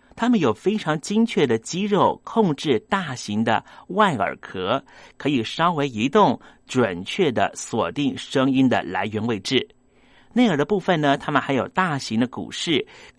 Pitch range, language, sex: 130-205 Hz, Chinese, male